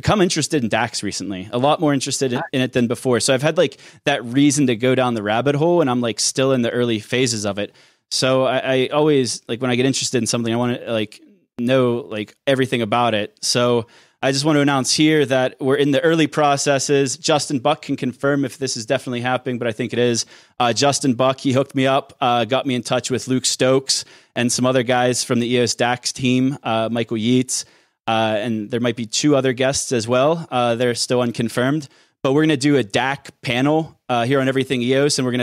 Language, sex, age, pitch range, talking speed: English, male, 20-39, 120-140 Hz, 235 wpm